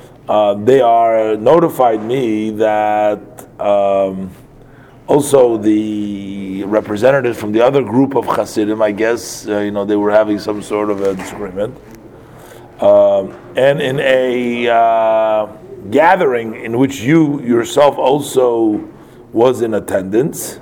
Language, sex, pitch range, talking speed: English, male, 105-125 Hz, 130 wpm